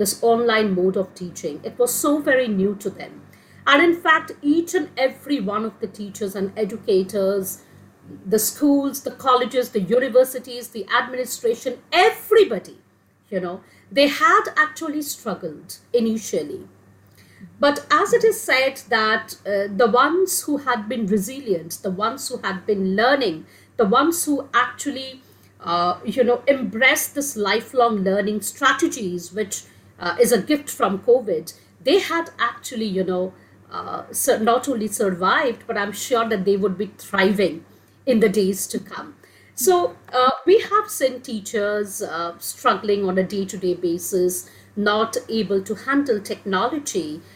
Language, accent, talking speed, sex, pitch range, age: English, Indian, 150 wpm, female, 195-280 Hz, 50-69